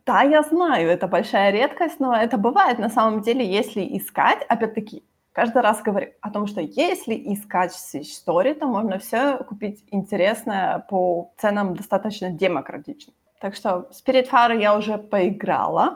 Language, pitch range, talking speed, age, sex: Ukrainian, 185-230 Hz, 155 wpm, 20-39, female